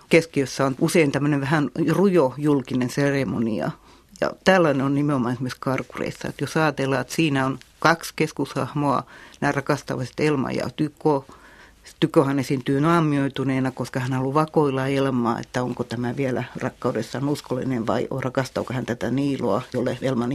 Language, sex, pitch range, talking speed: Finnish, female, 130-155 Hz, 135 wpm